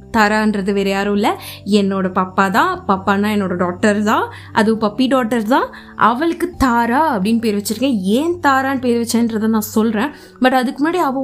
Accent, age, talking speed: native, 20-39, 150 wpm